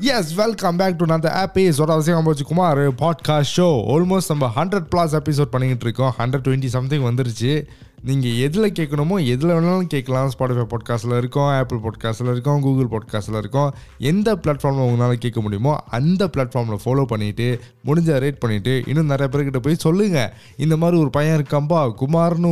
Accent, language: native, Tamil